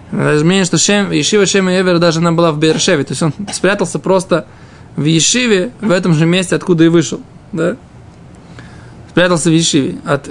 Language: Russian